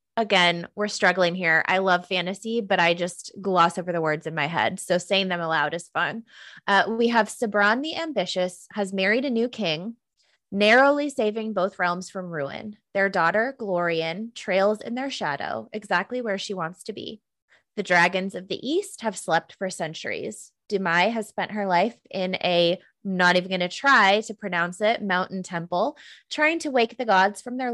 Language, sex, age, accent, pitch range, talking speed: English, female, 20-39, American, 180-225 Hz, 185 wpm